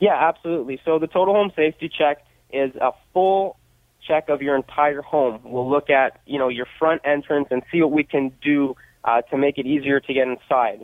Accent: American